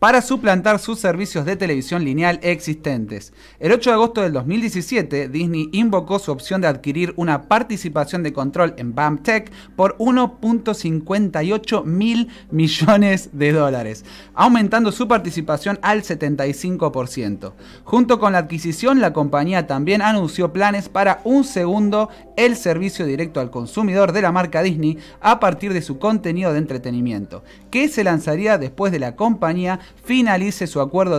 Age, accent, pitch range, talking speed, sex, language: 30-49, Argentinian, 150-210 Hz, 145 wpm, male, Spanish